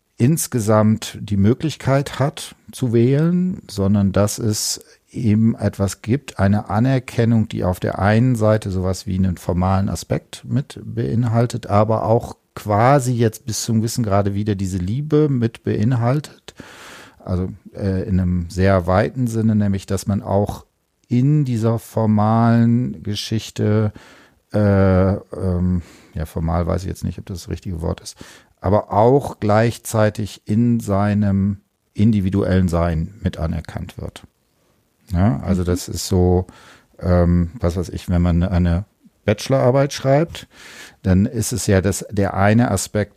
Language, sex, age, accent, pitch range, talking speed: German, male, 50-69, German, 95-115 Hz, 140 wpm